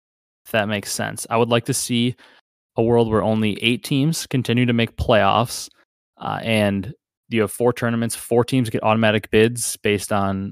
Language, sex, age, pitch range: English, male, 20-39, 105-120 Hz